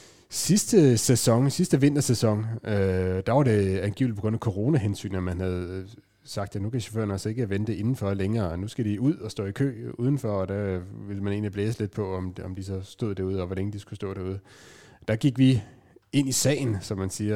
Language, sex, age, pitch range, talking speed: Danish, male, 30-49, 100-120 Hz, 220 wpm